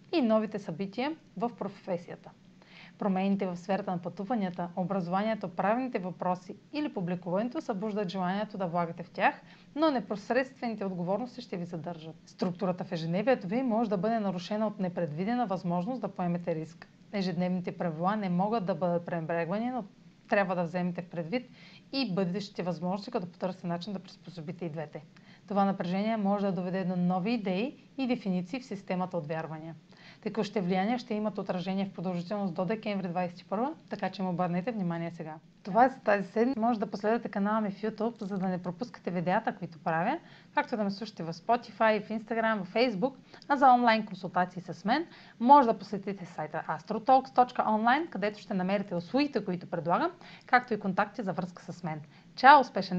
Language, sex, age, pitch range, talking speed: Bulgarian, female, 40-59, 180-225 Hz, 170 wpm